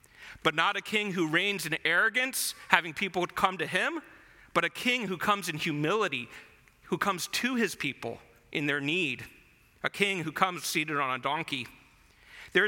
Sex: male